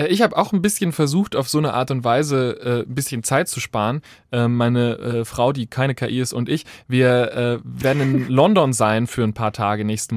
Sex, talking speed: male, 230 wpm